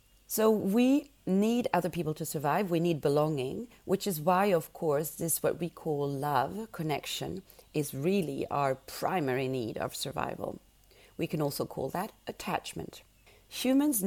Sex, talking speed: female, 150 wpm